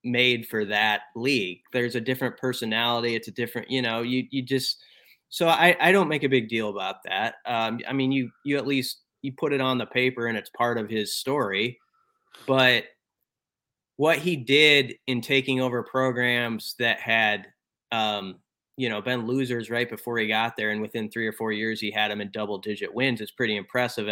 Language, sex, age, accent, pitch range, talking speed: English, male, 30-49, American, 110-135 Hz, 200 wpm